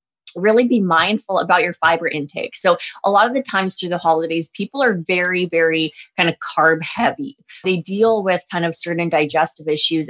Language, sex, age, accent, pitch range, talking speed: English, female, 20-39, American, 165-210 Hz, 190 wpm